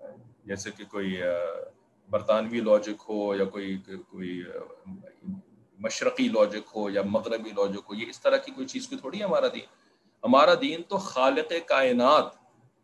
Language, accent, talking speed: English, Indian, 145 wpm